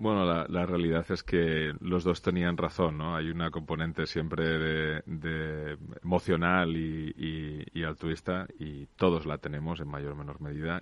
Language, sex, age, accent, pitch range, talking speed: Spanish, male, 30-49, Spanish, 75-85 Hz, 170 wpm